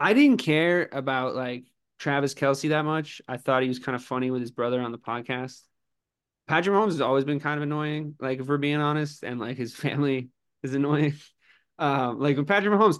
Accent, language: American, English